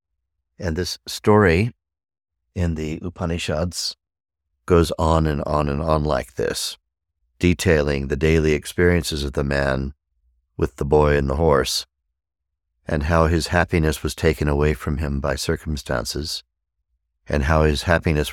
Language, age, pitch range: English, 60-79, 70-85 Hz